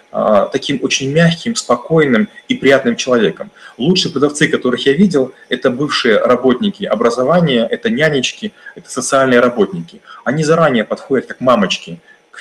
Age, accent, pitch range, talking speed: 30-49, native, 125-195 Hz, 130 wpm